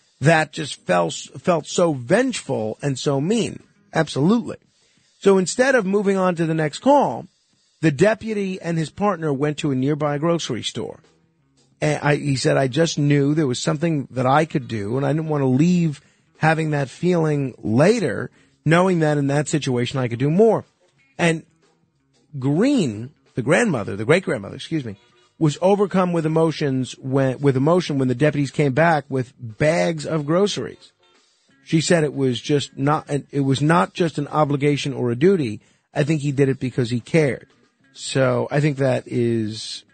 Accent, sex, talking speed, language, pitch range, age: American, male, 175 wpm, English, 130-165 Hz, 50-69